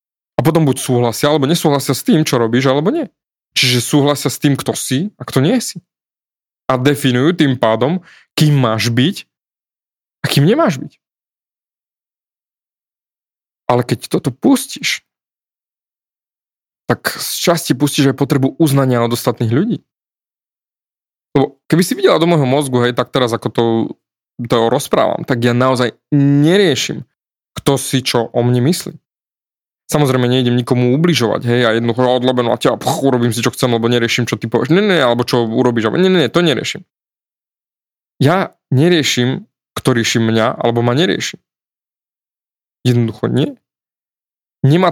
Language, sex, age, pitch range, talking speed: Slovak, male, 20-39, 120-155 Hz, 145 wpm